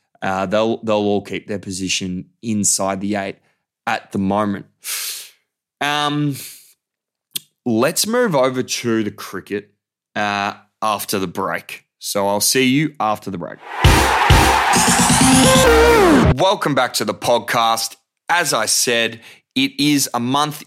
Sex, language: male, English